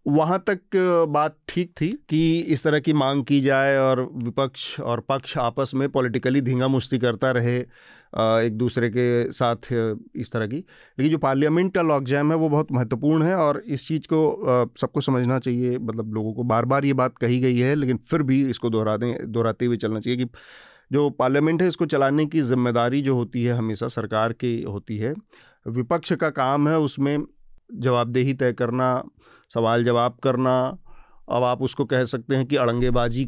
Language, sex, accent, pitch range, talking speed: Hindi, male, native, 120-145 Hz, 180 wpm